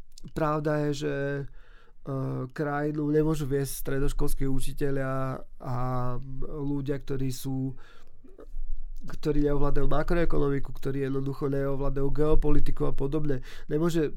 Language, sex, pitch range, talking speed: Slovak, male, 135-155 Hz, 95 wpm